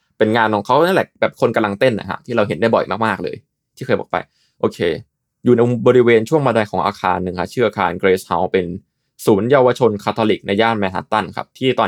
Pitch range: 95-120 Hz